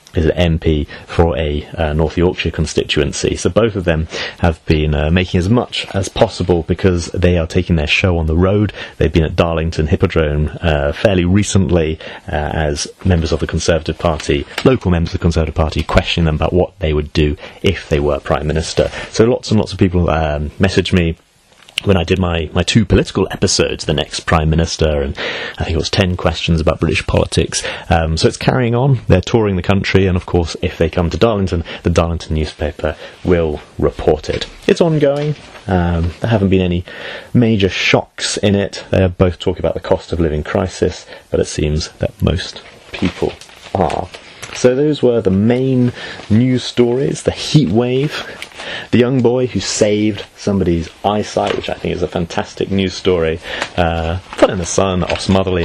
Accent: British